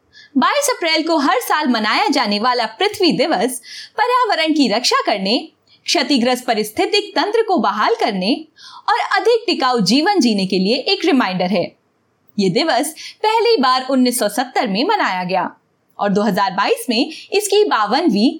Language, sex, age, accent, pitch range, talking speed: Hindi, female, 20-39, native, 235-355 Hz, 140 wpm